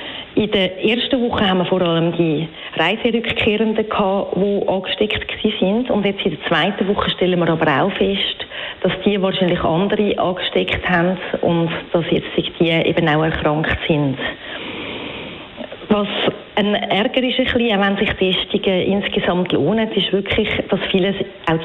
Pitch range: 180-215 Hz